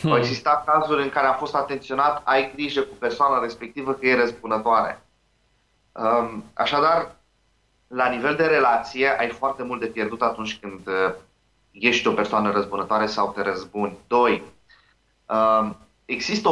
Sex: male